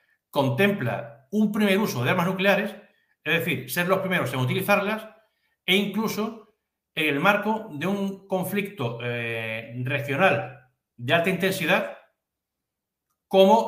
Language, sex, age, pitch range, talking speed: Spanish, male, 60-79, 135-190 Hz, 125 wpm